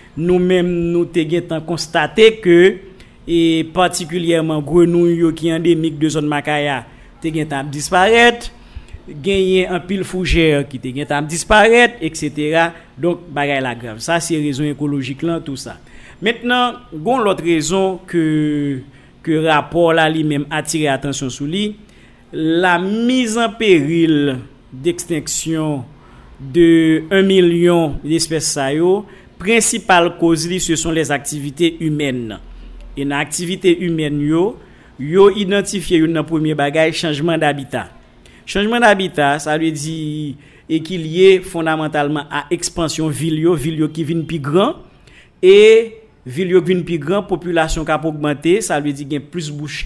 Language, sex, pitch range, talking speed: French, male, 150-180 Hz, 140 wpm